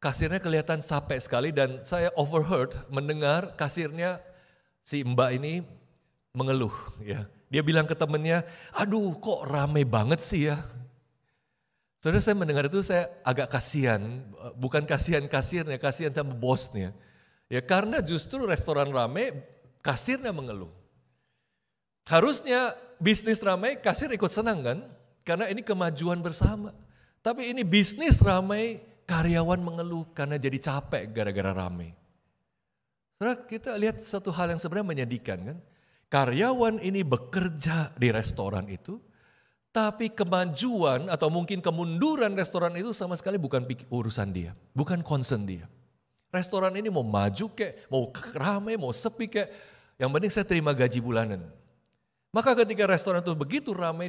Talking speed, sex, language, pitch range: 130 wpm, male, English, 130-190 Hz